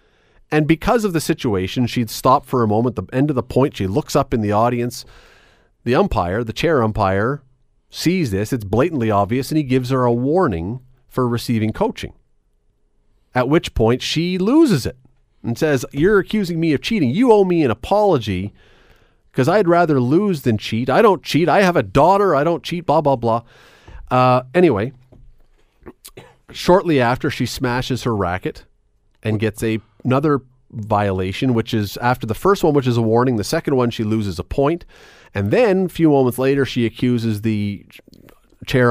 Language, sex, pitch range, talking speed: English, male, 110-145 Hz, 180 wpm